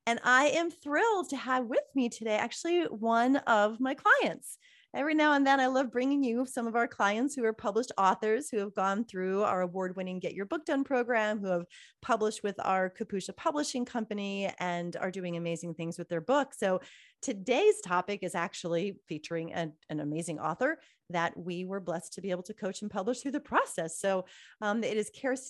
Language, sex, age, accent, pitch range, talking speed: English, female, 30-49, American, 180-245 Hz, 200 wpm